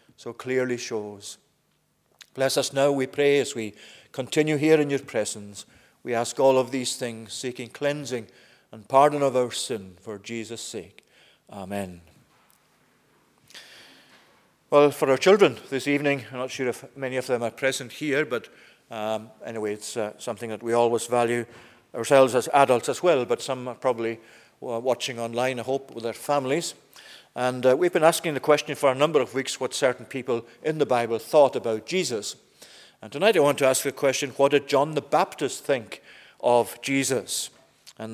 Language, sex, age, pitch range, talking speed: English, male, 40-59, 115-140 Hz, 175 wpm